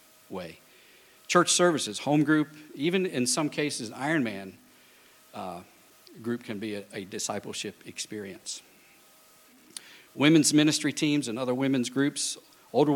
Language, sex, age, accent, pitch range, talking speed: English, male, 50-69, American, 110-140 Hz, 120 wpm